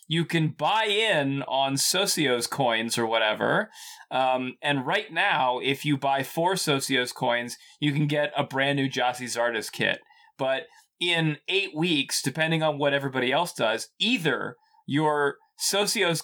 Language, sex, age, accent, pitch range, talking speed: English, male, 30-49, American, 135-180 Hz, 150 wpm